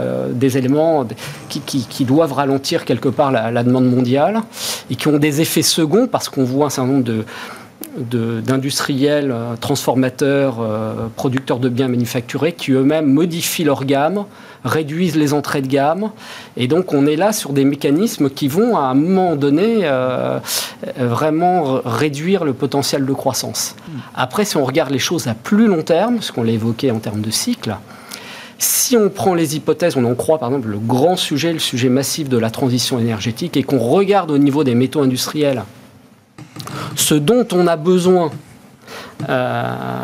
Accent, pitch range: French, 125-160 Hz